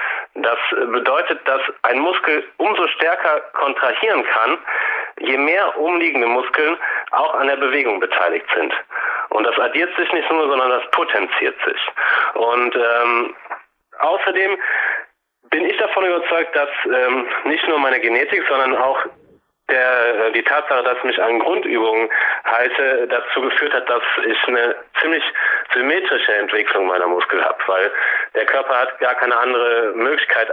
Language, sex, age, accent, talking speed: German, male, 30-49, German, 145 wpm